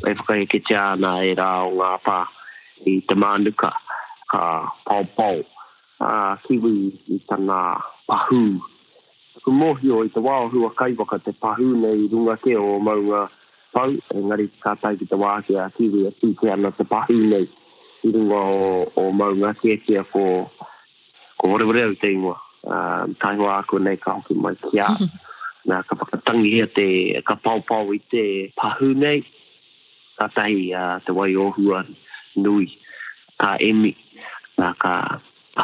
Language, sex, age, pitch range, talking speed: English, male, 30-49, 95-115 Hz, 140 wpm